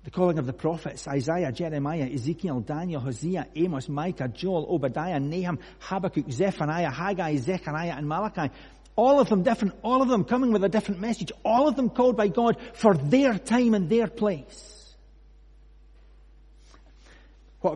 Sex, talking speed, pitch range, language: male, 155 wpm, 130-190 Hz, English